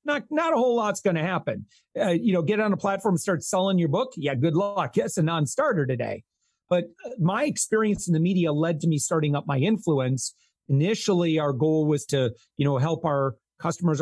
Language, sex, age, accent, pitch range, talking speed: English, male, 40-59, American, 155-200 Hz, 210 wpm